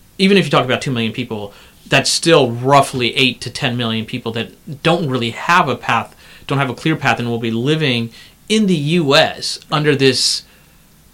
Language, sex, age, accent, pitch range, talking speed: English, male, 30-49, American, 115-145 Hz, 195 wpm